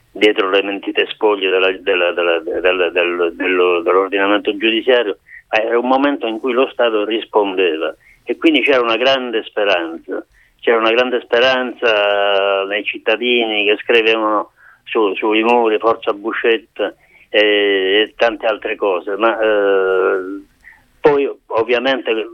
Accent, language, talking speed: native, Italian, 125 wpm